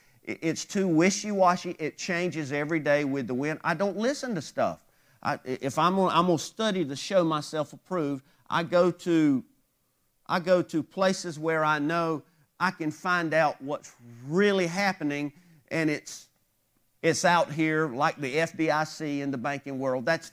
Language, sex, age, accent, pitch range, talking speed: English, male, 50-69, American, 140-175 Hz, 160 wpm